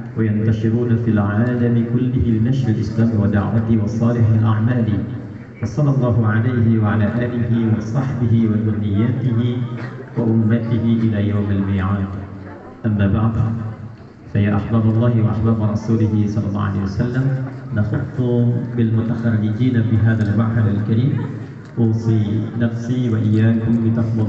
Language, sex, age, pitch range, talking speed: Indonesian, male, 40-59, 110-120 Hz, 100 wpm